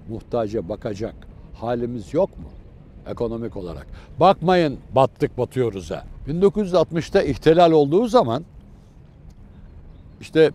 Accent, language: native, Turkish